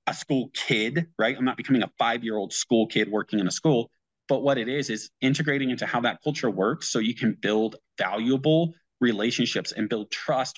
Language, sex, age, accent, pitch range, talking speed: English, male, 30-49, American, 110-135 Hz, 200 wpm